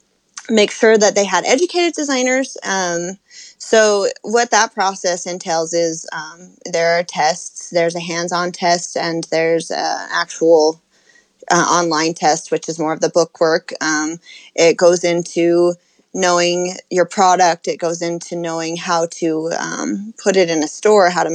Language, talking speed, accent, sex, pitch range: English, 160 wpm, American, female, 165-200 Hz